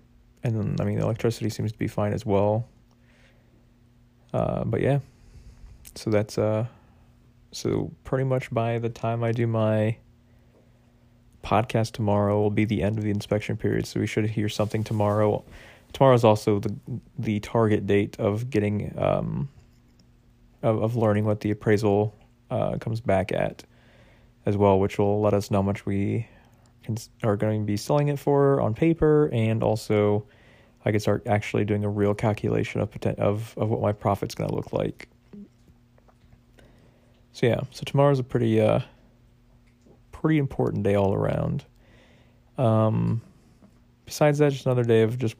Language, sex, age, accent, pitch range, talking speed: English, male, 20-39, American, 105-120 Hz, 160 wpm